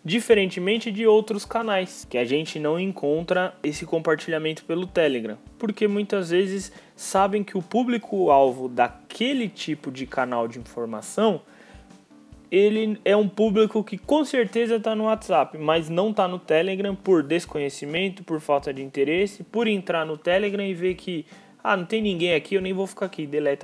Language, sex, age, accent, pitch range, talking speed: English, male, 20-39, Brazilian, 150-200 Hz, 165 wpm